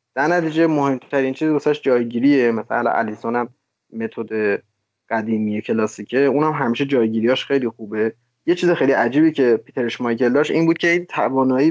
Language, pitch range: Persian, 120-150 Hz